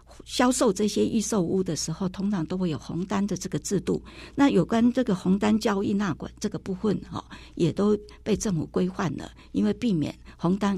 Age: 60-79